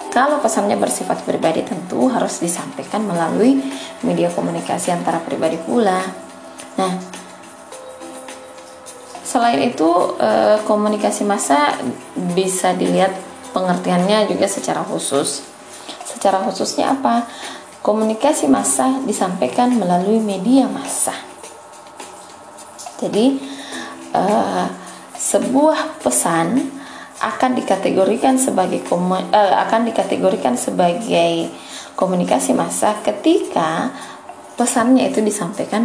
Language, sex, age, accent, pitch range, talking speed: Indonesian, female, 20-39, native, 195-265 Hz, 80 wpm